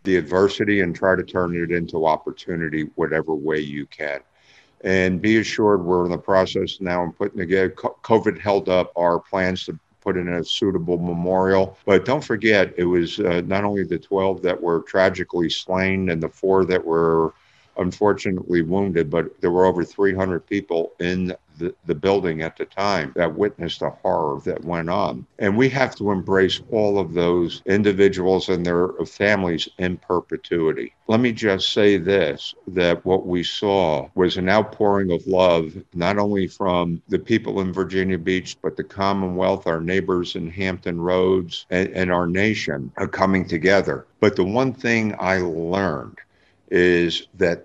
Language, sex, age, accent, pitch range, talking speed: English, male, 50-69, American, 85-100 Hz, 170 wpm